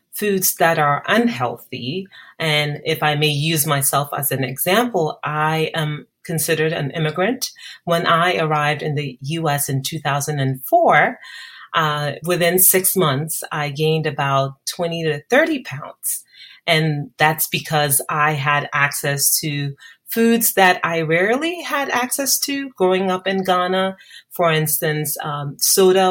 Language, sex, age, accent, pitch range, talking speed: English, female, 30-49, American, 145-175 Hz, 135 wpm